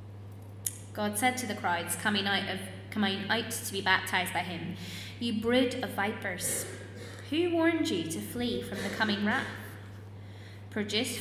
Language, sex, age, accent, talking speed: English, female, 20-39, British, 145 wpm